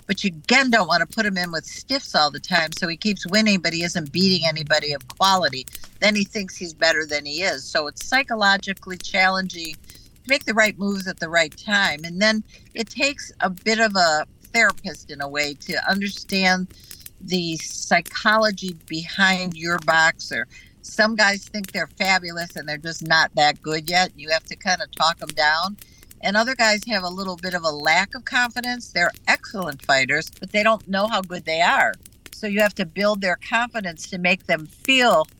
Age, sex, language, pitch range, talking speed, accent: 50-69, female, English, 165-215 Hz, 200 wpm, American